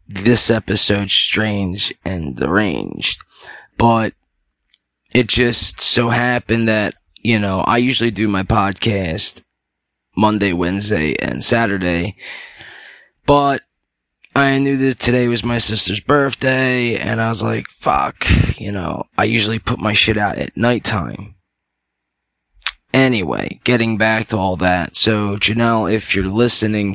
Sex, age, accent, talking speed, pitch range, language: male, 20-39, American, 125 wpm, 95-120 Hz, English